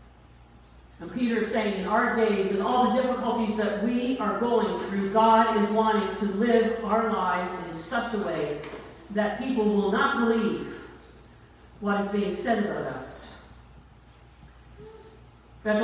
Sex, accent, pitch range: female, American, 205-245 Hz